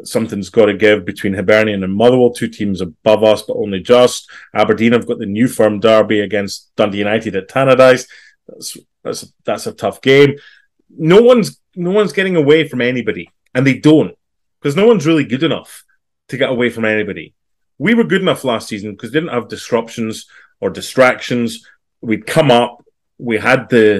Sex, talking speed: male, 185 wpm